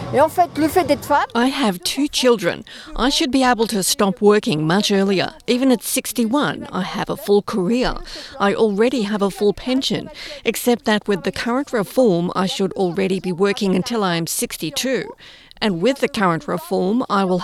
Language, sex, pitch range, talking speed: English, female, 195-245 Hz, 170 wpm